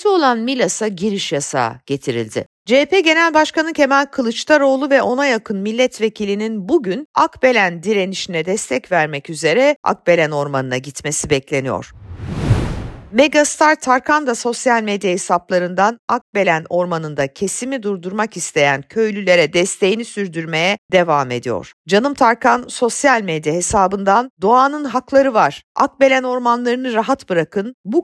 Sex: female